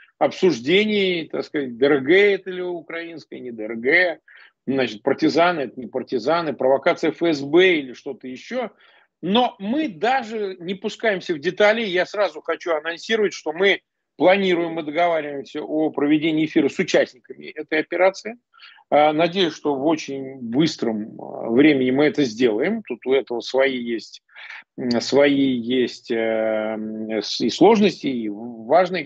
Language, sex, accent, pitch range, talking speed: Russian, male, native, 145-220 Hz, 125 wpm